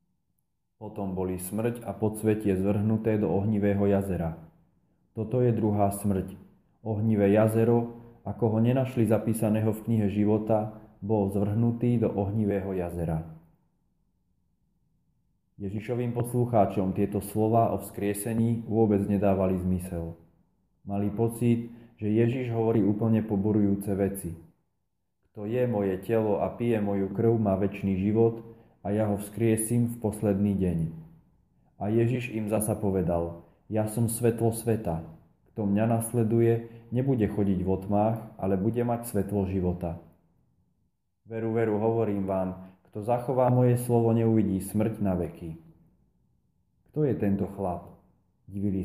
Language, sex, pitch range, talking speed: Slovak, male, 95-115 Hz, 125 wpm